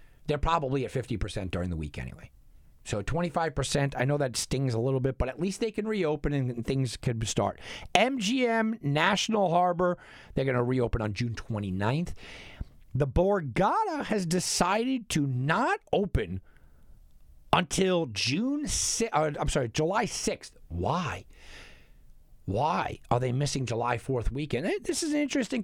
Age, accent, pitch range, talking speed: 50-69, American, 115-175 Hz, 145 wpm